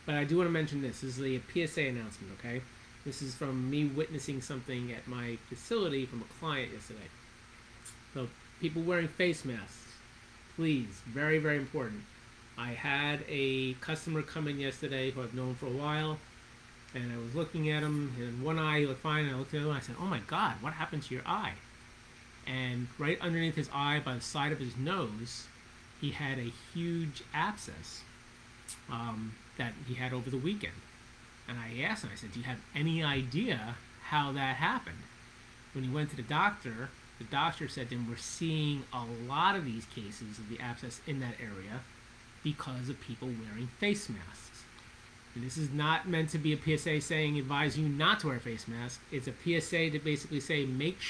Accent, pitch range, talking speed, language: American, 120-150 Hz, 200 wpm, English